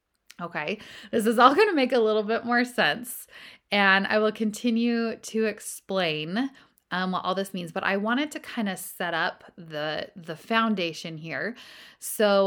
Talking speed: 175 wpm